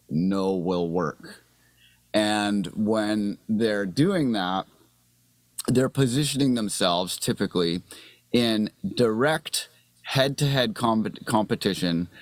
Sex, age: male, 30-49